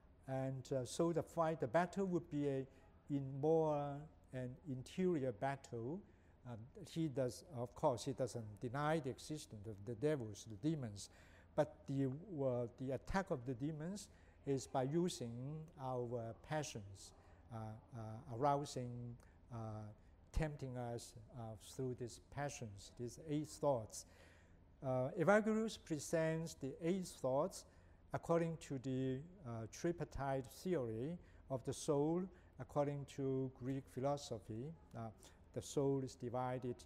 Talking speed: 130 wpm